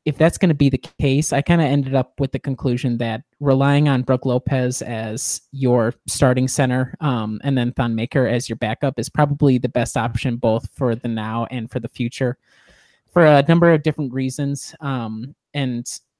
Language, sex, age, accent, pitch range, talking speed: English, male, 30-49, American, 120-145 Hz, 195 wpm